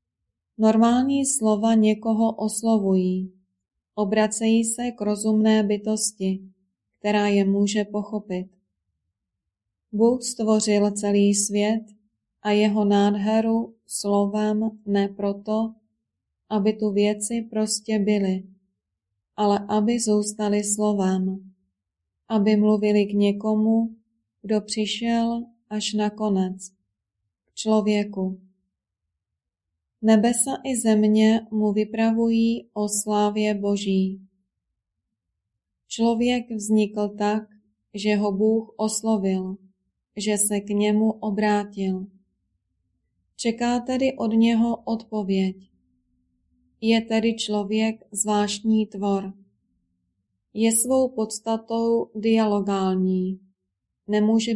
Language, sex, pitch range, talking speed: Czech, female, 190-220 Hz, 85 wpm